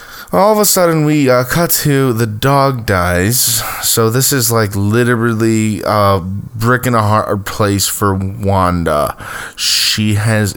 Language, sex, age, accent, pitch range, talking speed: English, male, 20-39, American, 90-120 Hz, 150 wpm